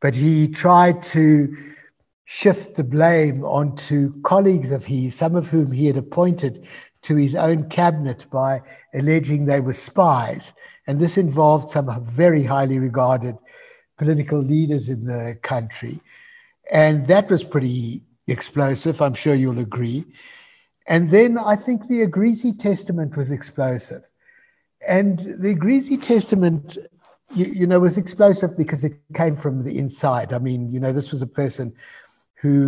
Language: English